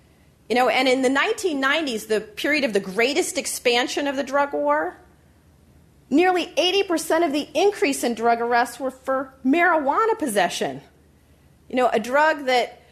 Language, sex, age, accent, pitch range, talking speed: English, female, 40-59, American, 200-280 Hz, 155 wpm